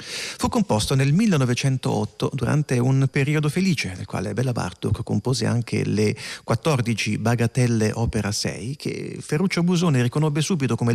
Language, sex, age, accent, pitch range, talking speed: Italian, male, 40-59, native, 110-145 Hz, 135 wpm